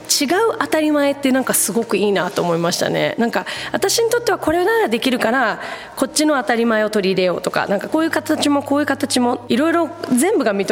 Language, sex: Japanese, female